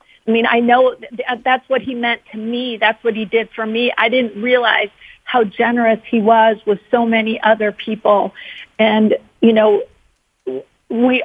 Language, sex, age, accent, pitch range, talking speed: English, female, 50-69, American, 215-240 Hz, 170 wpm